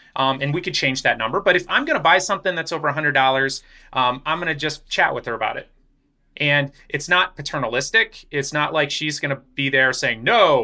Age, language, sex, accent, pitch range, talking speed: 30-49, English, male, American, 135-170 Hz, 230 wpm